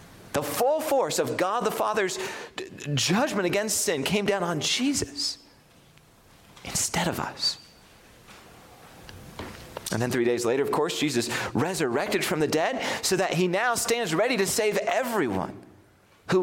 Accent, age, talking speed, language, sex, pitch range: American, 30-49, 140 wpm, English, male, 160-265 Hz